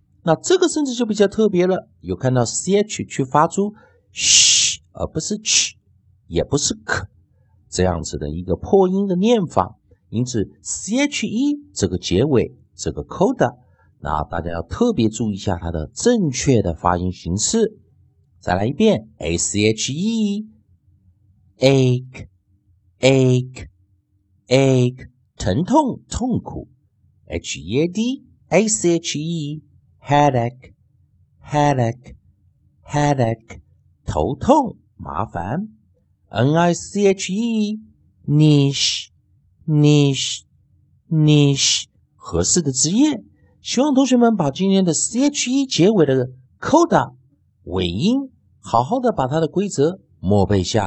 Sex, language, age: male, Chinese, 50-69